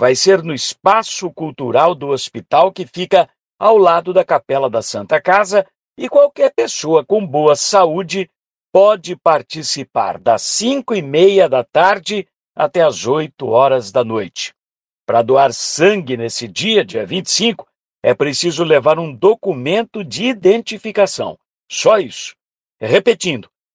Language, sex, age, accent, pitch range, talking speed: Portuguese, male, 60-79, Brazilian, 145-200 Hz, 135 wpm